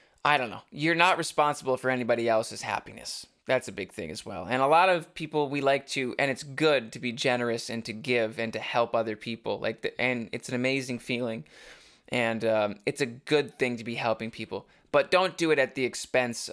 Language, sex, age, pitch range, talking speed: English, male, 20-39, 110-135 Hz, 225 wpm